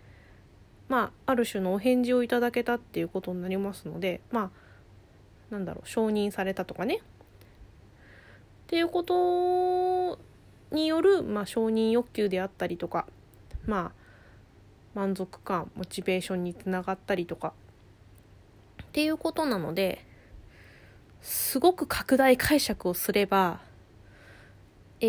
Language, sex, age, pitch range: Japanese, female, 20-39, 185-265 Hz